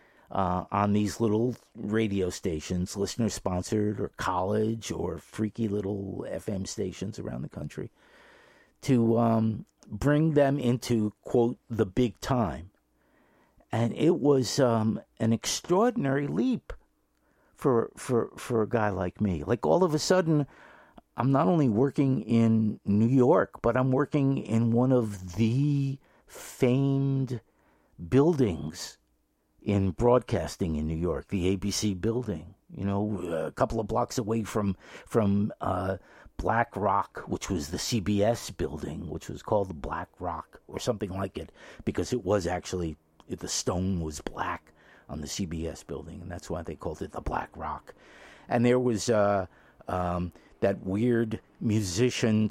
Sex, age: male, 50-69